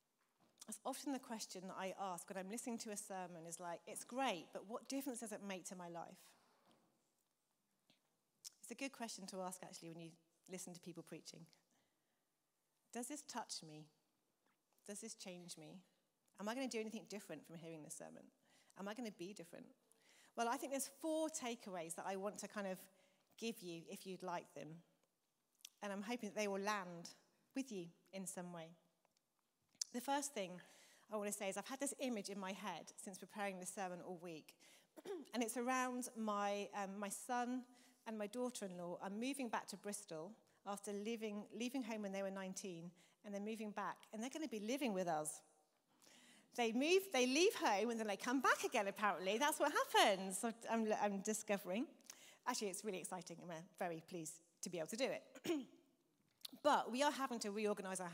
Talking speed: 195 wpm